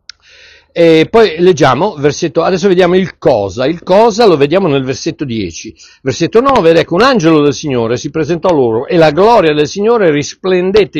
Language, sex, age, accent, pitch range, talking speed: Italian, male, 60-79, native, 140-200 Hz, 180 wpm